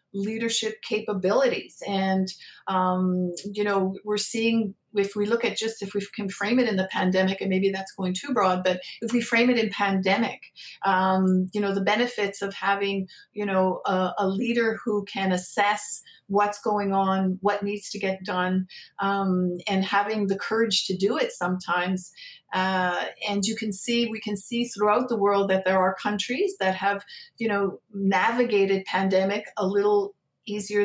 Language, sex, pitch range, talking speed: English, female, 190-215 Hz, 175 wpm